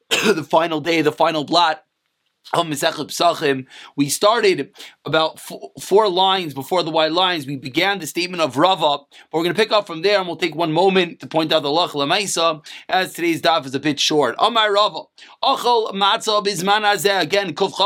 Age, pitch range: 30-49, 170-210 Hz